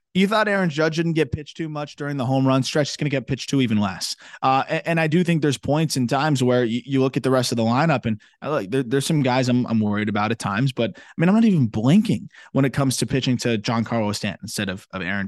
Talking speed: 295 wpm